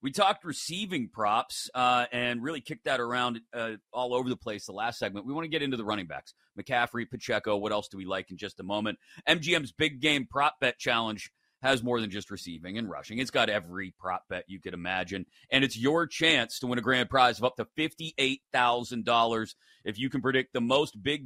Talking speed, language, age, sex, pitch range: 220 wpm, English, 30-49, male, 110-145 Hz